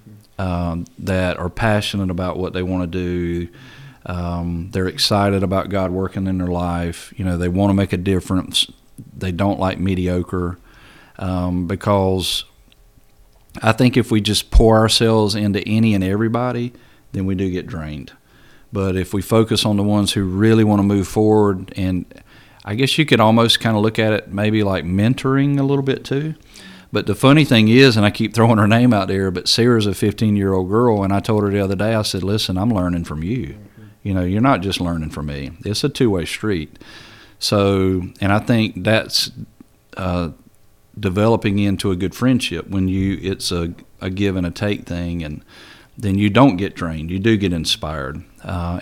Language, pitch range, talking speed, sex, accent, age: English, 90-110 Hz, 195 wpm, male, American, 40-59